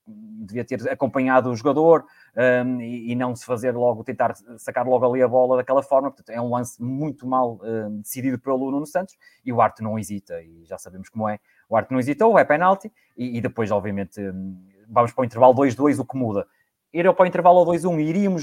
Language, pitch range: Portuguese, 125-145 Hz